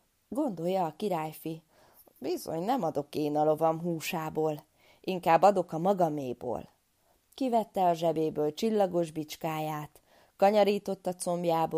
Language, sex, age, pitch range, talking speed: Hungarian, female, 20-39, 160-220 Hz, 105 wpm